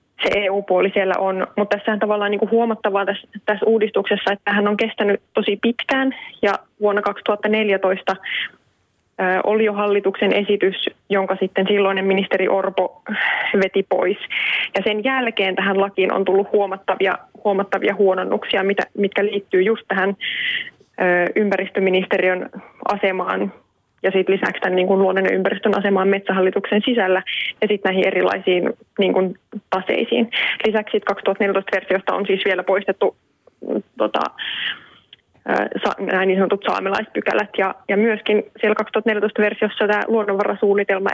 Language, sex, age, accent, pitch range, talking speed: Finnish, female, 20-39, native, 195-215 Hz, 115 wpm